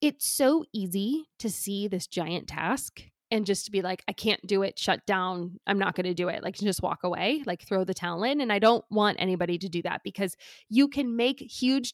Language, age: English, 20-39